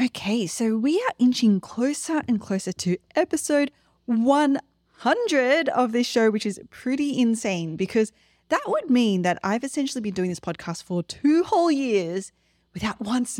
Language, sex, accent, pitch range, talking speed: English, female, Australian, 185-270 Hz, 155 wpm